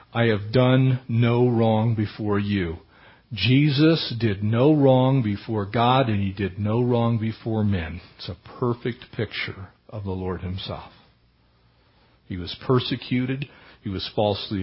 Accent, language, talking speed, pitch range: American, English, 140 wpm, 110-135 Hz